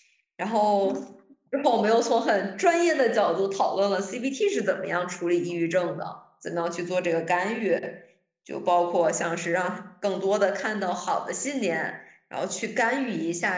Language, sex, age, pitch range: Chinese, female, 20-39, 175-230 Hz